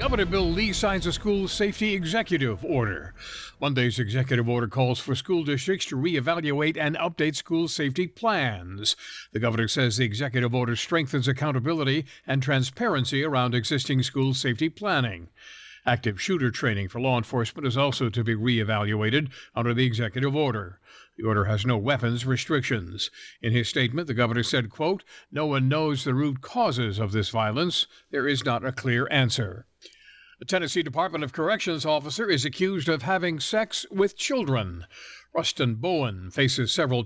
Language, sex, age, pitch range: English, male, 60-79, 120-165 Hz